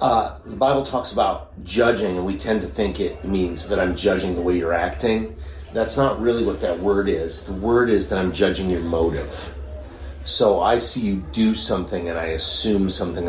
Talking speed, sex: 205 wpm, male